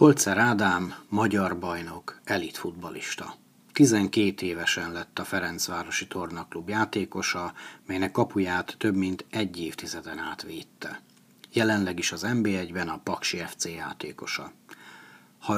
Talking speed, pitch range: 110 wpm, 90-110 Hz